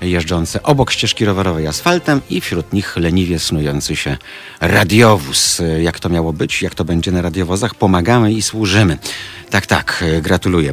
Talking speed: 150 wpm